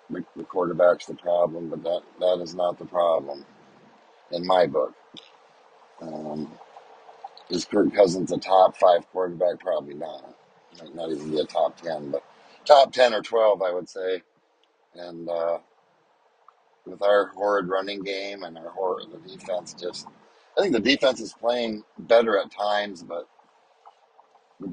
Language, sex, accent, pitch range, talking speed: English, male, American, 90-110 Hz, 155 wpm